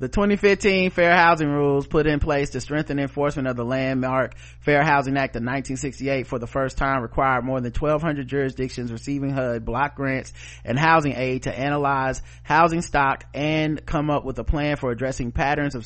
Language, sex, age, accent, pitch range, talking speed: English, male, 30-49, American, 125-180 Hz, 185 wpm